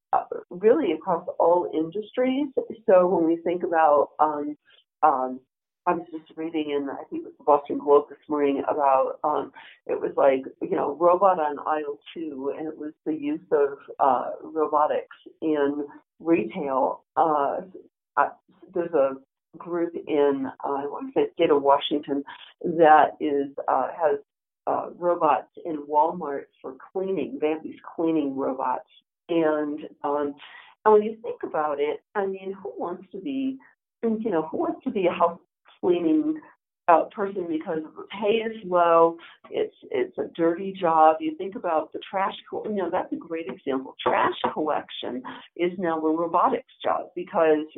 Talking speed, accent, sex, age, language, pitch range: 160 wpm, American, female, 50-69, English, 150-215 Hz